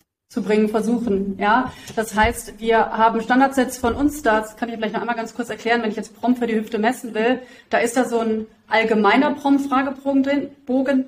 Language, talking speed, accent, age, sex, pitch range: German, 195 wpm, German, 30-49, female, 225-260 Hz